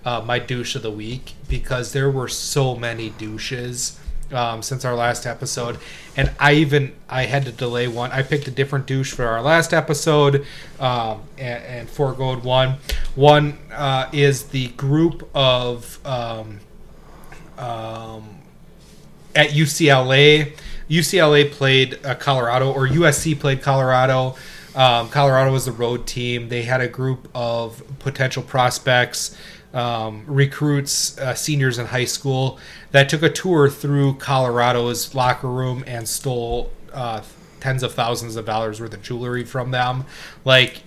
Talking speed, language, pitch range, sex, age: 145 wpm, English, 120-140 Hz, male, 30-49